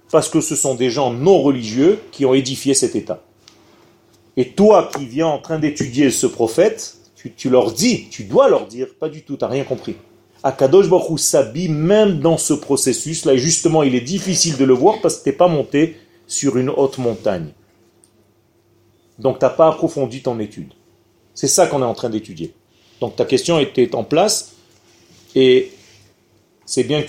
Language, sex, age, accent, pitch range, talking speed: French, male, 40-59, French, 115-165 Hz, 190 wpm